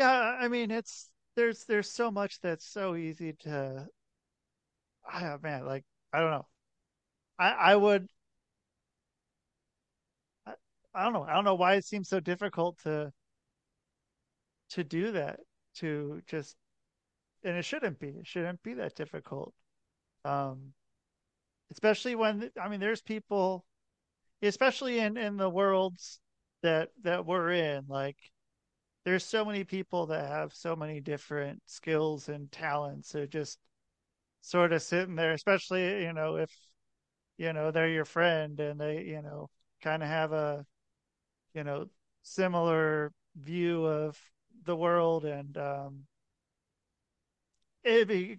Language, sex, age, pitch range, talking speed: English, male, 40-59, 150-185 Hz, 140 wpm